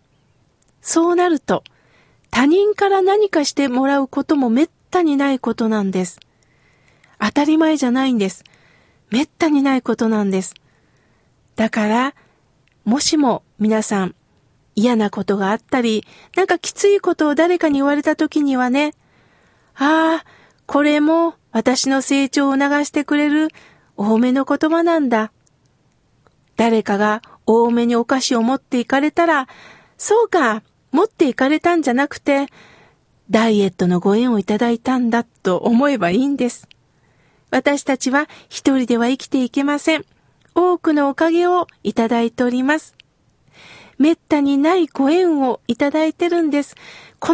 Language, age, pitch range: Japanese, 40-59, 230-315 Hz